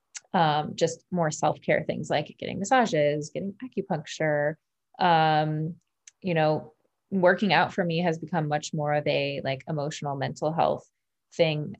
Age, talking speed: 20-39, 140 wpm